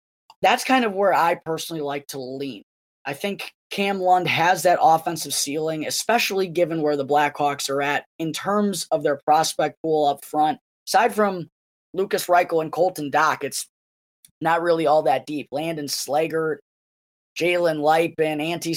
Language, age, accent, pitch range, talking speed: English, 20-39, American, 150-185 Hz, 165 wpm